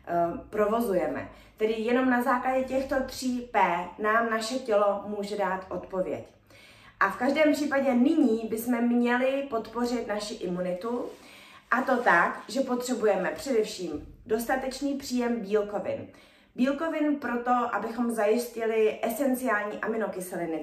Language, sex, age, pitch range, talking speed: Czech, female, 20-39, 195-240 Hz, 115 wpm